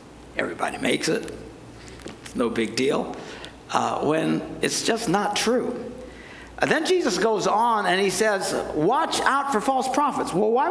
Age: 60-79